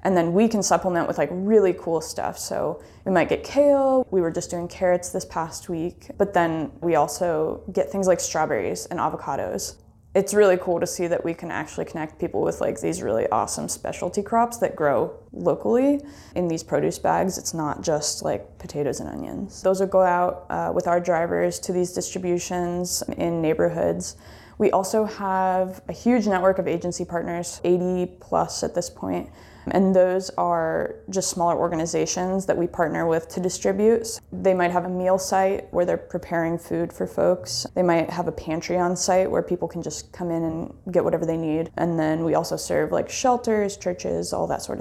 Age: 20-39